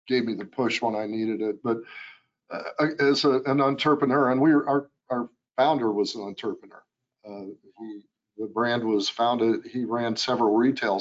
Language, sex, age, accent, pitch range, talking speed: English, male, 50-69, American, 110-135 Hz, 165 wpm